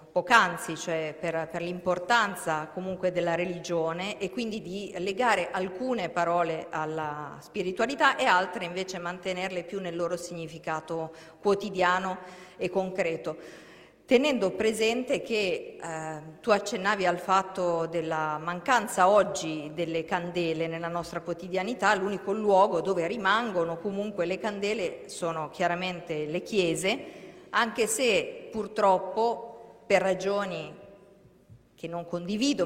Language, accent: Italian, native